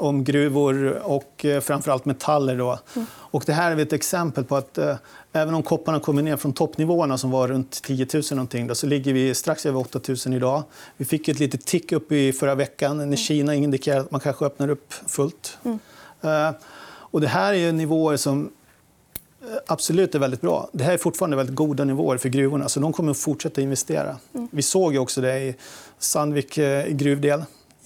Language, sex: Swedish, male